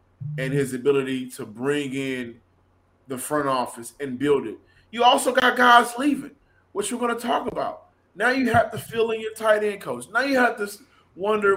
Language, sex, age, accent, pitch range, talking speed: English, male, 20-39, American, 130-200 Hz, 195 wpm